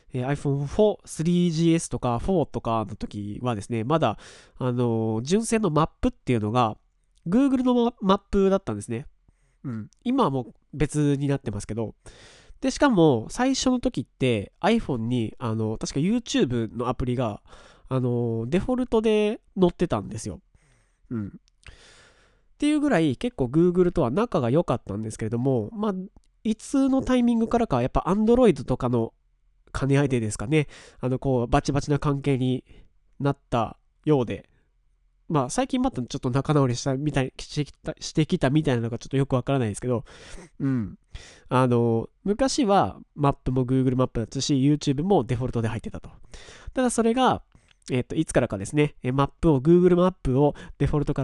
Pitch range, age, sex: 125-180 Hz, 20-39, male